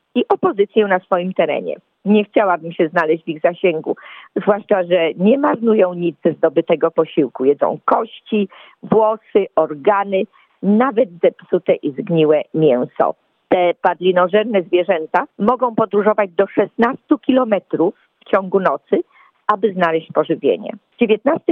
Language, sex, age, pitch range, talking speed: Polish, female, 40-59, 180-220 Hz, 125 wpm